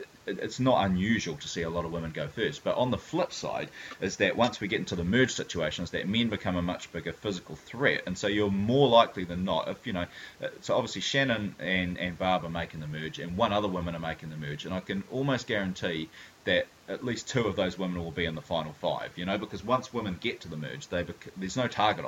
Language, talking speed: English, 255 wpm